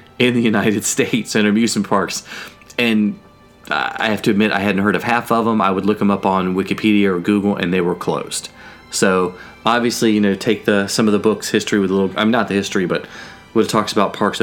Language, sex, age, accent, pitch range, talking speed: English, male, 30-49, American, 95-115 Hz, 235 wpm